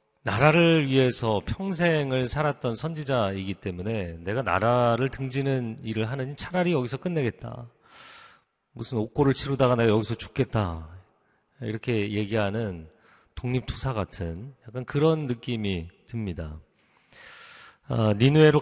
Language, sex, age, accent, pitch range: Korean, male, 40-59, native, 105-135 Hz